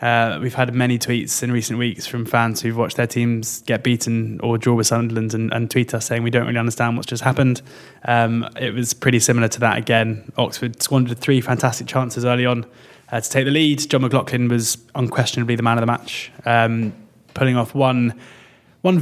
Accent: British